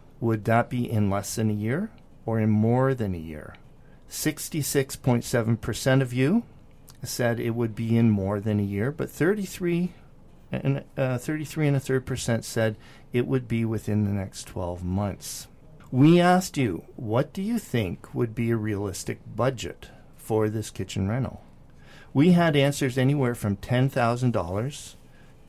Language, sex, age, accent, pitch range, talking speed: English, male, 50-69, American, 105-135 Hz, 155 wpm